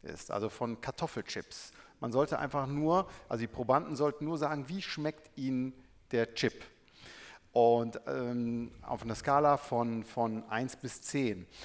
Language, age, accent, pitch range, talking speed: German, 50-69, German, 115-150 Hz, 150 wpm